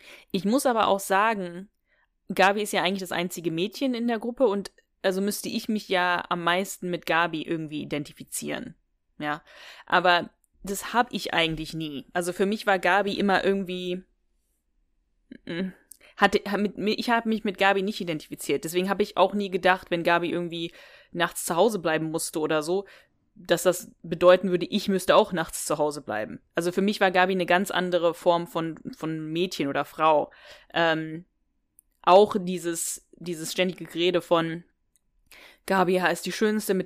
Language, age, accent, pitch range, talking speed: German, 20-39, German, 170-200 Hz, 165 wpm